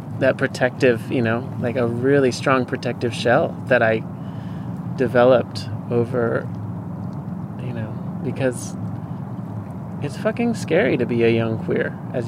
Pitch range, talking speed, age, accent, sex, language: 120-150 Hz, 125 wpm, 30-49, American, male, English